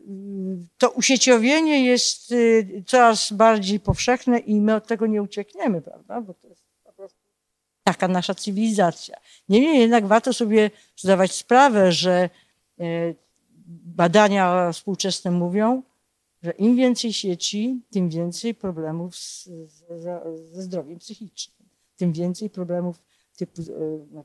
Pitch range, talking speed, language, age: 165-215 Hz, 115 wpm, Polish, 50-69